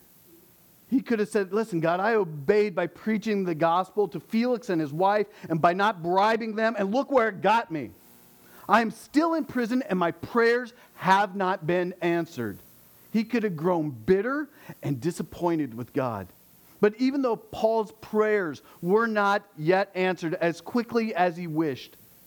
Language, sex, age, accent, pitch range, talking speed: English, male, 50-69, American, 120-200 Hz, 170 wpm